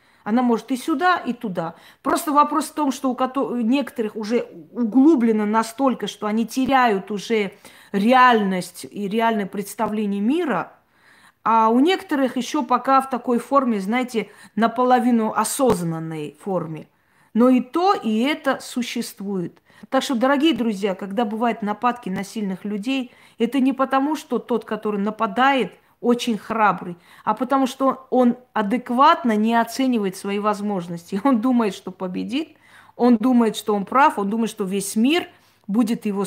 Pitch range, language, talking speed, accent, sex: 205-260 Hz, Russian, 145 wpm, native, female